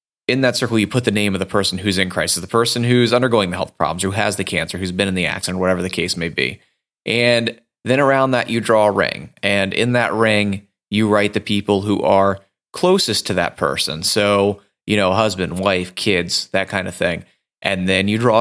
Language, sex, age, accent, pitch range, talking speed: English, male, 30-49, American, 95-125 Hz, 230 wpm